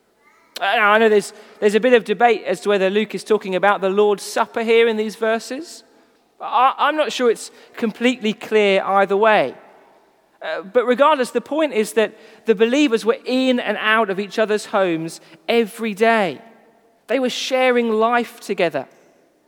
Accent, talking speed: British, 170 wpm